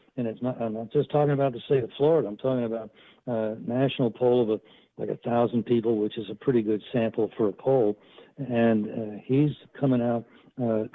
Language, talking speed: English, 215 wpm